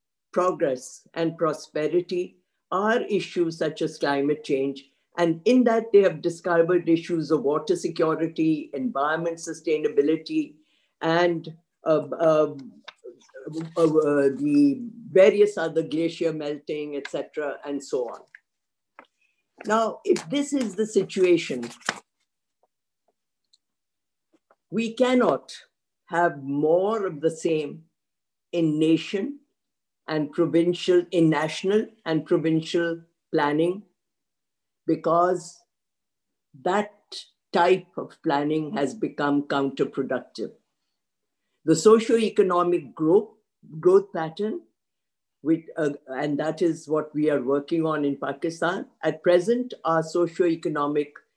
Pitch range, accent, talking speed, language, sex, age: 155-200 Hz, Indian, 100 wpm, English, female, 50-69